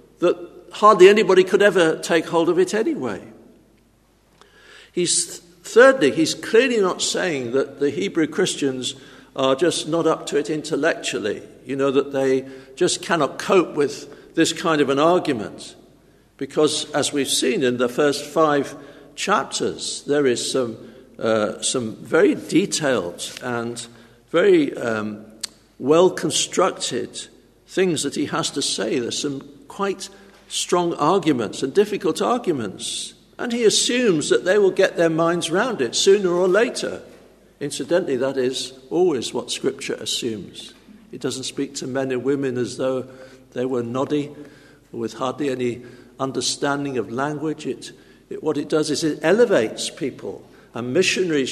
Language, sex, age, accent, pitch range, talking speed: English, male, 60-79, British, 130-180 Hz, 150 wpm